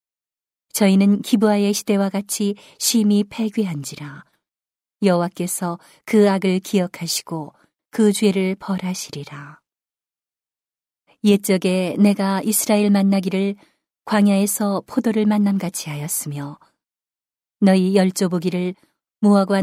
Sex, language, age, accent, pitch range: female, Korean, 40-59, native, 175-205 Hz